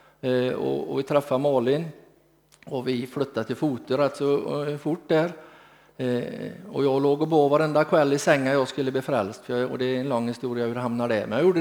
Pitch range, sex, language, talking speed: 130-170 Hz, male, Swedish, 210 wpm